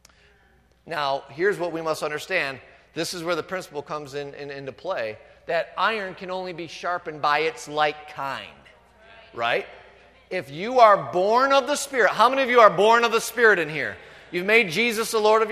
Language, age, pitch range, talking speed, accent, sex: English, 40-59, 170-225 Hz, 195 wpm, American, male